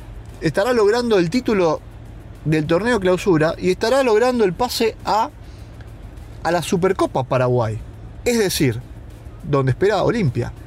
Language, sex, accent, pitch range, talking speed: English, male, Argentinian, 120-185 Hz, 125 wpm